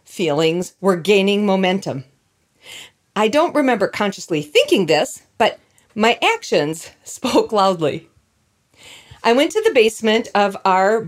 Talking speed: 120 wpm